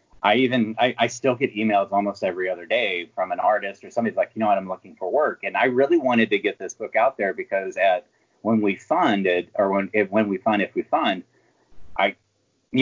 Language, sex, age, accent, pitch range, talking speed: English, male, 30-49, American, 95-120 Hz, 235 wpm